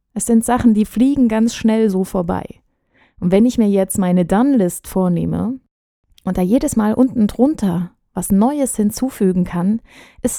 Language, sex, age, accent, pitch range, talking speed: German, female, 20-39, German, 175-225 Hz, 160 wpm